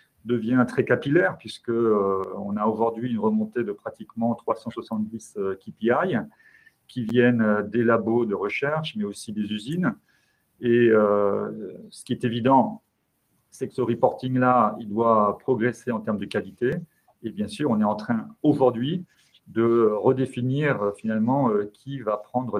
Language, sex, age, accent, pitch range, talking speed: French, male, 40-59, French, 105-130 Hz, 140 wpm